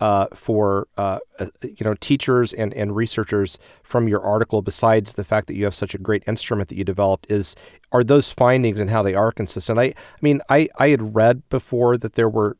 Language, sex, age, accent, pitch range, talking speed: English, male, 30-49, American, 100-120 Hz, 215 wpm